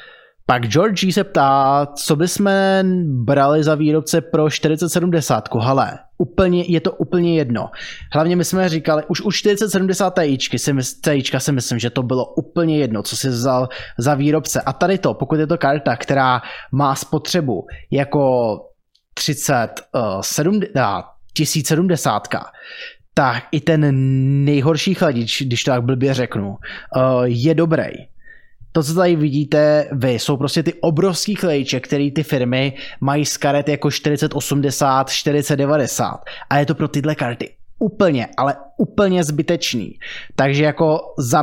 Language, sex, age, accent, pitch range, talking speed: Czech, male, 20-39, native, 130-155 Hz, 140 wpm